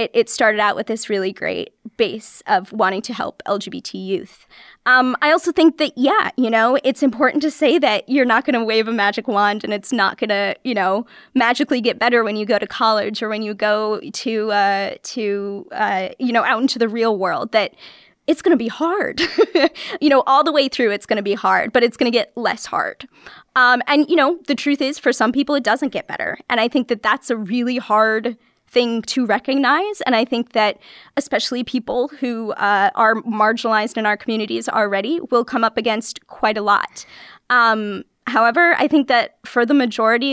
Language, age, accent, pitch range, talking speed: English, 20-39, American, 210-265 Hz, 215 wpm